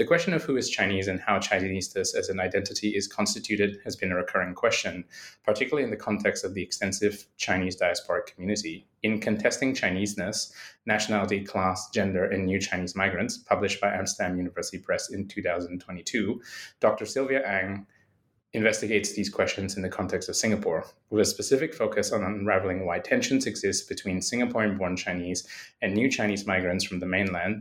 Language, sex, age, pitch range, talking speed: English, male, 20-39, 95-120 Hz, 165 wpm